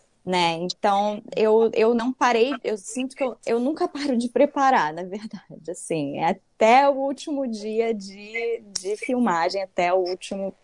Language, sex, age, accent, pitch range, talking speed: Portuguese, female, 10-29, Brazilian, 185-230 Hz, 160 wpm